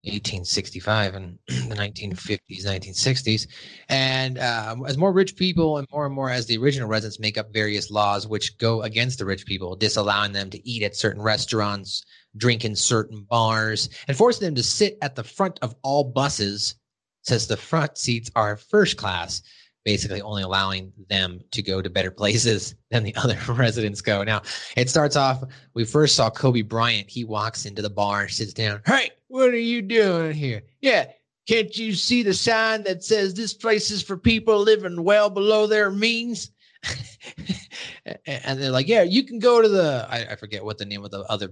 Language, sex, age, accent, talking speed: English, male, 30-49, American, 185 wpm